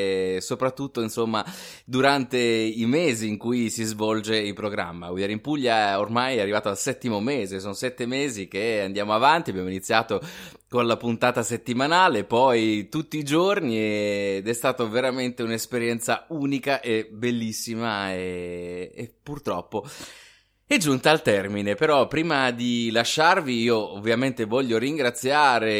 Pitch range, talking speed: 110-135 Hz, 135 wpm